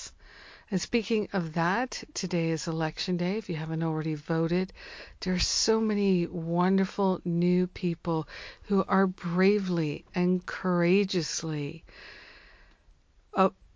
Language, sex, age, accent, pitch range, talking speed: English, female, 50-69, American, 160-190 Hz, 115 wpm